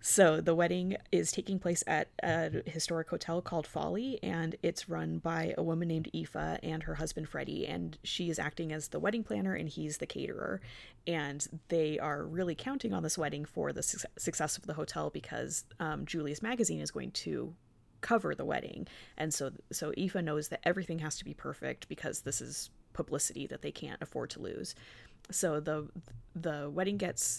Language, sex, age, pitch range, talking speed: English, female, 20-39, 145-170 Hz, 190 wpm